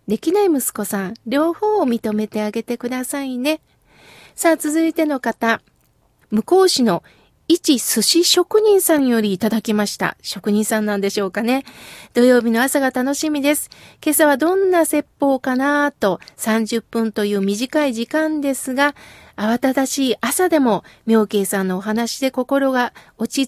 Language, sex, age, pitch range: Japanese, female, 40-59, 220-285 Hz